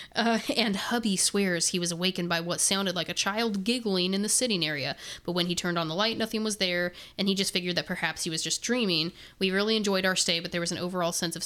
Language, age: English, 10-29